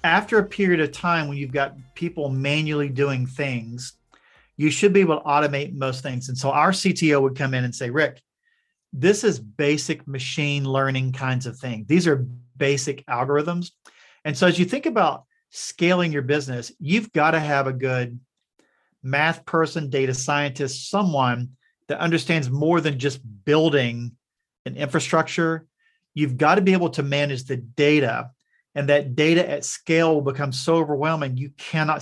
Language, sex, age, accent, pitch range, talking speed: English, male, 40-59, American, 135-165 Hz, 165 wpm